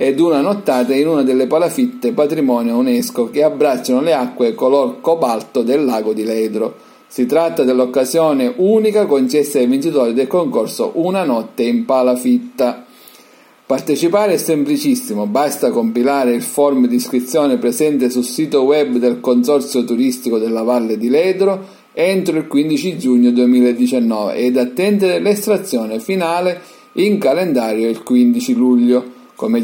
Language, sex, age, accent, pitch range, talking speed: Italian, male, 40-59, native, 125-195 Hz, 135 wpm